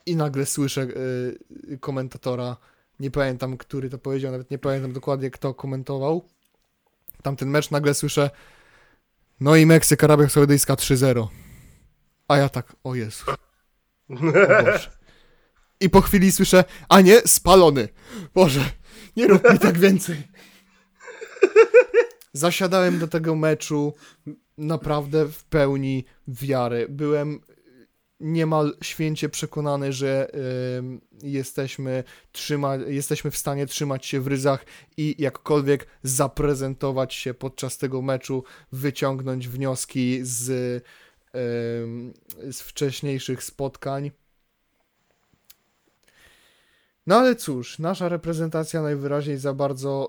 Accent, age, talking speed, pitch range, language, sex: native, 20-39, 110 wpm, 130-155 Hz, Polish, male